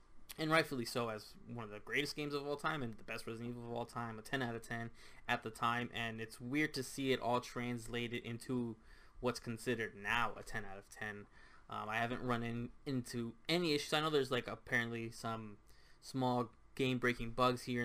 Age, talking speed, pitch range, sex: 10-29, 210 wpm, 115-130 Hz, male